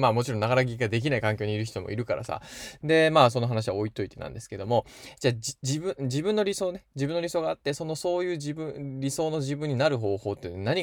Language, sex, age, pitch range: Japanese, male, 20-39, 105-170 Hz